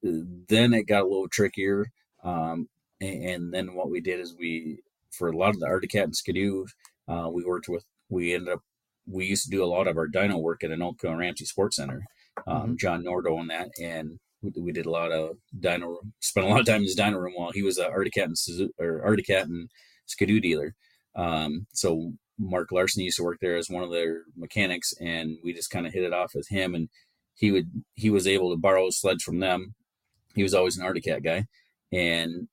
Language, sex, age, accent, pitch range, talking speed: English, male, 30-49, American, 85-100 Hz, 220 wpm